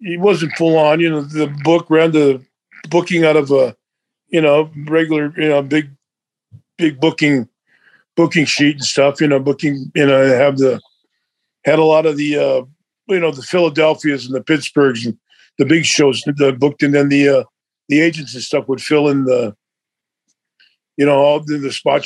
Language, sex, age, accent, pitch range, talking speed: English, male, 50-69, American, 135-155 Hz, 190 wpm